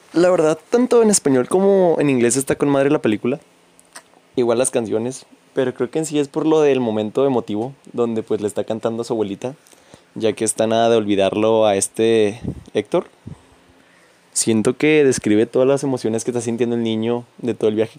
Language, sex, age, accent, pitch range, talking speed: Spanish, male, 20-39, Mexican, 110-135 Hz, 195 wpm